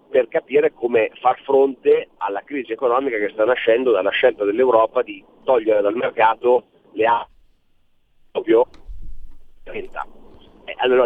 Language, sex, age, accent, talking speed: Italian, male, 40-59, native, 130 wpm